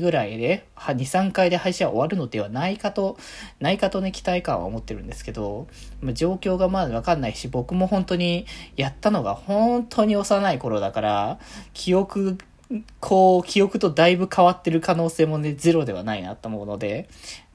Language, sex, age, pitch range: Japanese, male, 20-39, 115-180 Hz